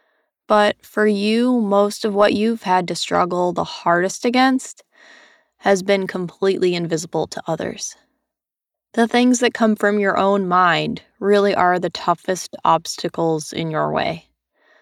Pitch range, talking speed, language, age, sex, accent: 180-220 Hz, 140 wpm, English, 20-39, female, American